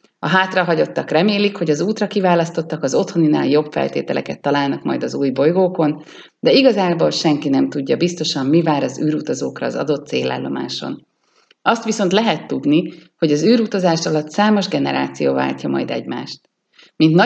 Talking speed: 150 wpm